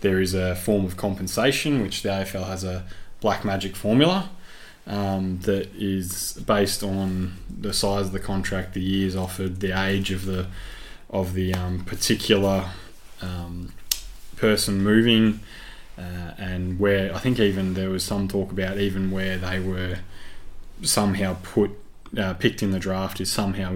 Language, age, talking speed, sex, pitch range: English, 20-39, 155 wpm, male, 95-100 Hz